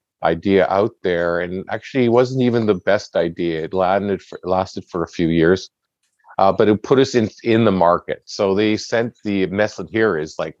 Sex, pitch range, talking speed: male, 85-95 Hz, 205 wpm